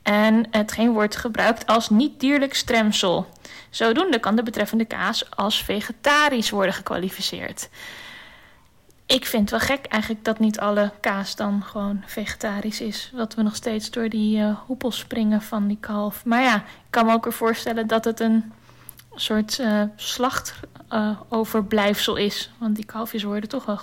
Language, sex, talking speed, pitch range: Dutch, female, 165 wpm, 210-245 Hz